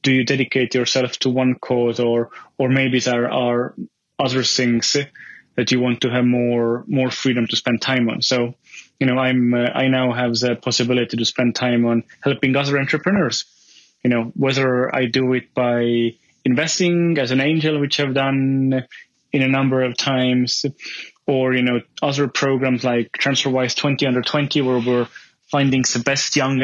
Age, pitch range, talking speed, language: 20-39, 120-135 Hz, 175 wpm, English